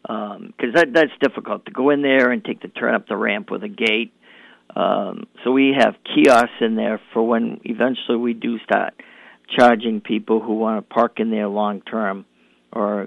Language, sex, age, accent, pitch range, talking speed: English, male, 50-69, American, 110-135 Hz, 190 wpm